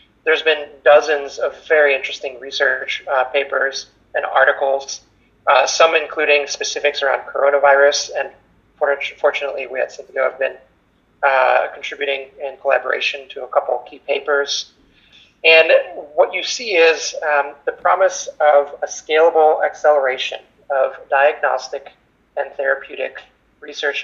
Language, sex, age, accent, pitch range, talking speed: English, male, 30-49, American, 140-155 Hz, 125 wpm